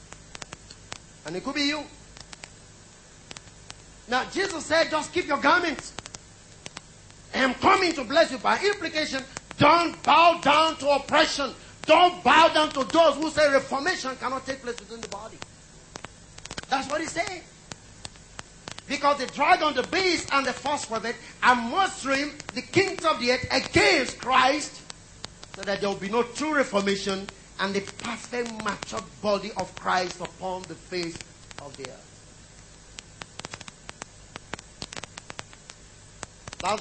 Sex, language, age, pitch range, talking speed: male, English, 40-59, 215-305 Hz, 135 wpm